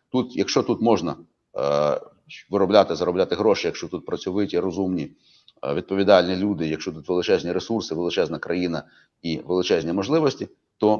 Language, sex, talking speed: Ukrainian, male, 125 wpm